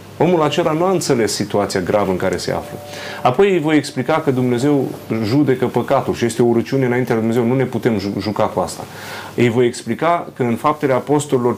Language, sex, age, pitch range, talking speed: Romanian, male, 30-49, 110-135 Hz, 200 wpm